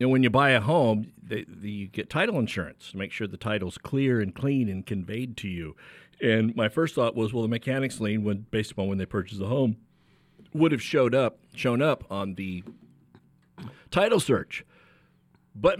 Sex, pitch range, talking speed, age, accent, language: male, 100-135 Hz, 205 wpm, 50-69, American, English